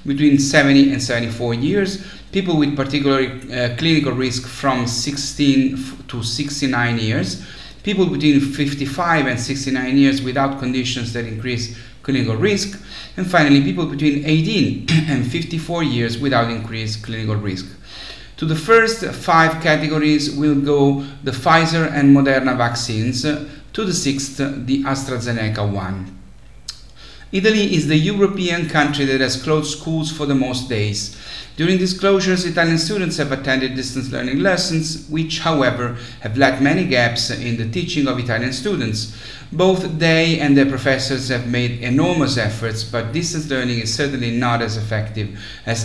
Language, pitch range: English, 120-155 Hz